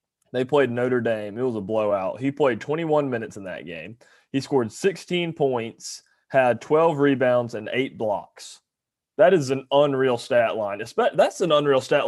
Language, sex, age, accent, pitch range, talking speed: English, male, 20-39, American, 115-145 Hz, 175 wpm